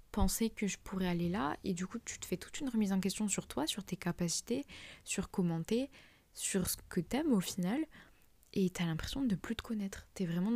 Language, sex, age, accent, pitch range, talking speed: French, female, 20-39, French, 180-215 Hz, 220 wpm